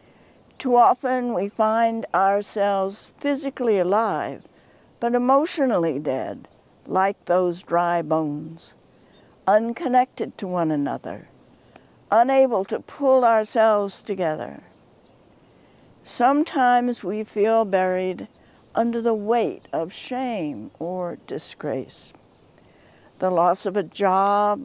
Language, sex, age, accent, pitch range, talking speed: English, female, 60-79, American, 185-245 Hz, 95 wpm